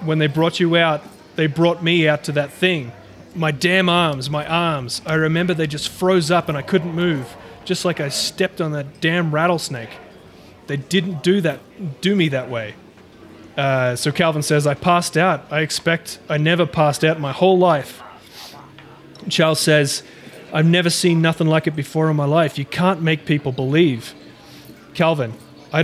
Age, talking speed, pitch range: 30-49, 185 wpm, 145-175 Hz